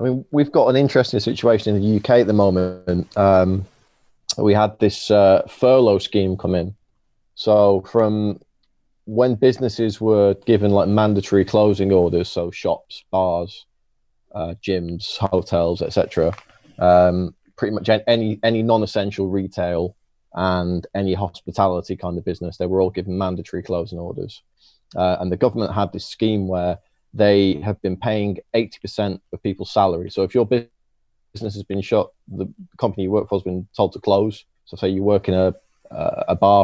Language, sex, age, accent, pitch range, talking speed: English, male, 20-39, British, 90-105 Hz, 165 wpm